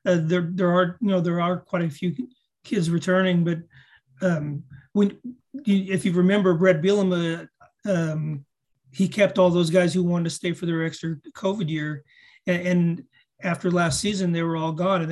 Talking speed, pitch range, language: 180 wpm, 165-185 Hz, English